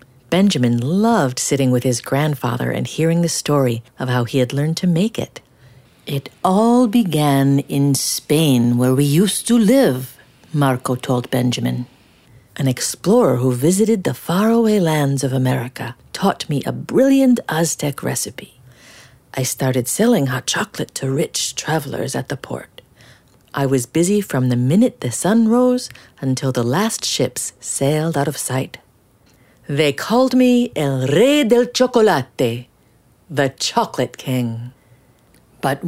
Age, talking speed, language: 50-69, 140 wpm, English